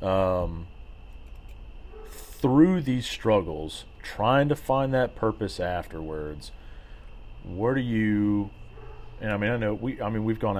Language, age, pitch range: English, 40-59, 80-105 Hz